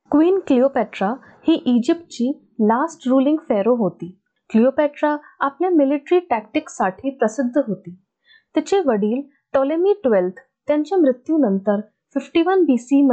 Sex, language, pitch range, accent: female, Marathi, 220-320 Hz, native